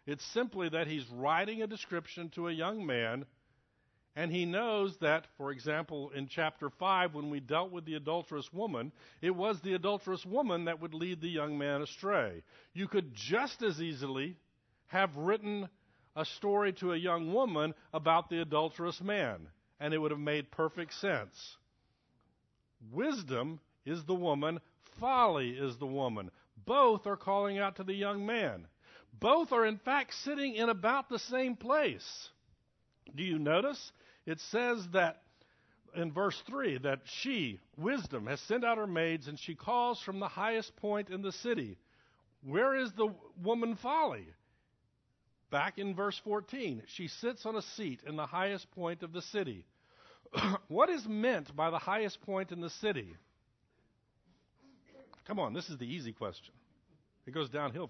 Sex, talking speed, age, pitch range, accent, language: male, 165 wpm, 60-79, 150-210 Hz, American, English